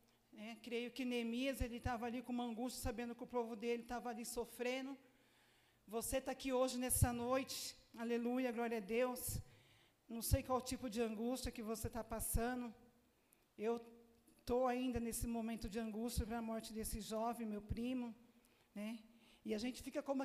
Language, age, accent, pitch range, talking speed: Portuguese, 40-59, Brazilian, 220-255 Hz, 170 wpm